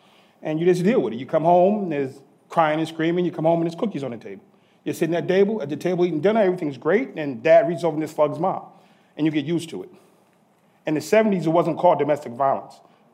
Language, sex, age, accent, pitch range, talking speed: English, male, 30-49, American, 165-215 Hz, 260 wpm